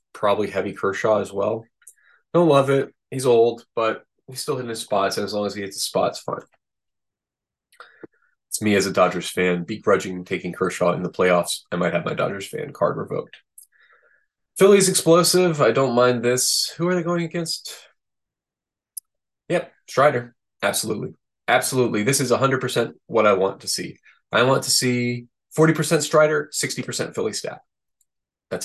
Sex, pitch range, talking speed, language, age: male, 100-130 Hz, 165 wpm, English, 20-39